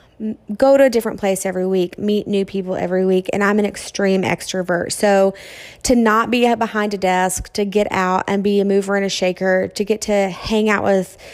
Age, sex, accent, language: 20-39, female, American, English